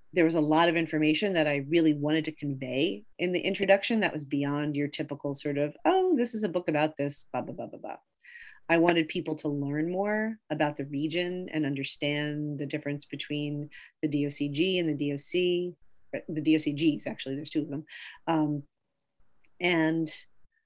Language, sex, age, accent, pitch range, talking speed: English, female, 40-59, American, 145-180 Hz, 180 wpm